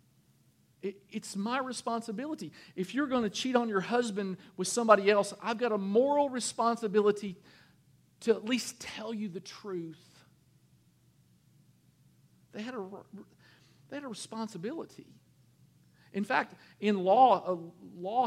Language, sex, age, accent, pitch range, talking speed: English, male, 40-59, American, 155-215 Hz, 125 wpm